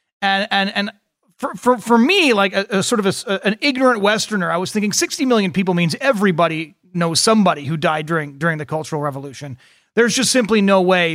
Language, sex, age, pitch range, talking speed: English, male, 30-49, 175-230 Hz, 210 wpm